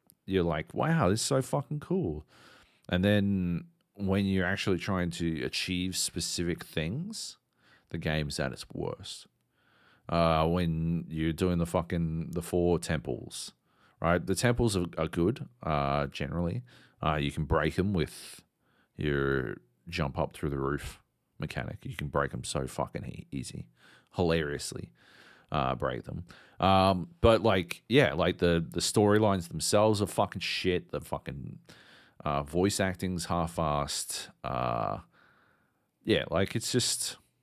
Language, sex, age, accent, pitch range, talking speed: English, male, 40-59, Australian, 80-95 Hz, 140 wpm